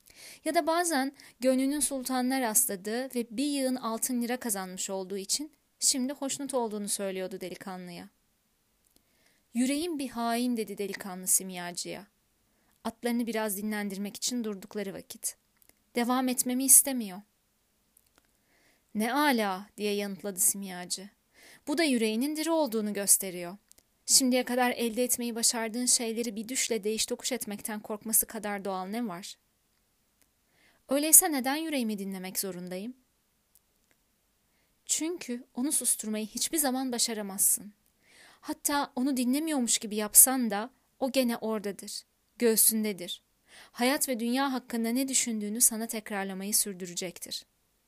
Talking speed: 115 wpm